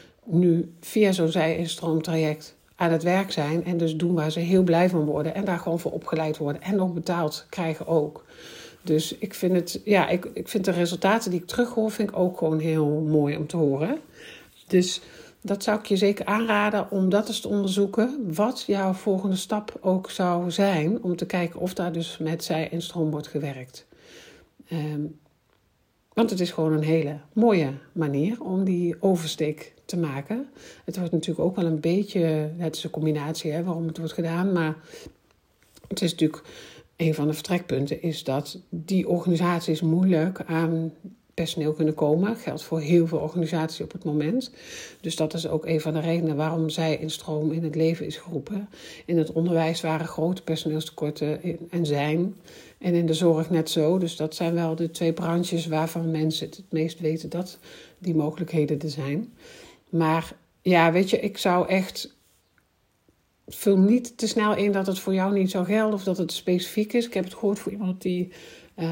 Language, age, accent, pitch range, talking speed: Dutch, 50-69, Dutch, 160-190 Hz, 190 wpm